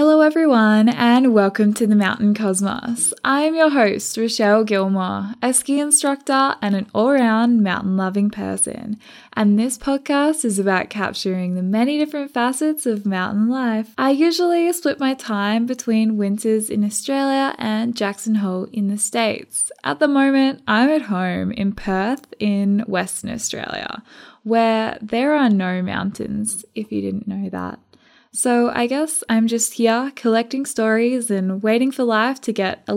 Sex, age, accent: female, 10-29, Australian